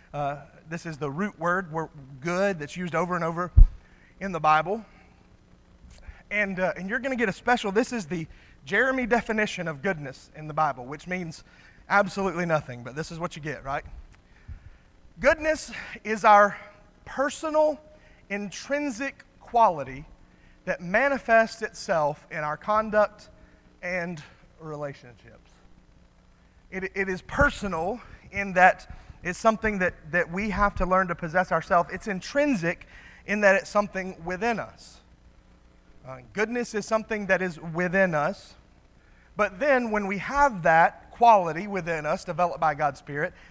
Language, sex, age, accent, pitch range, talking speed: English, male, 30-49, American, 150-210 Hz, 145 wpm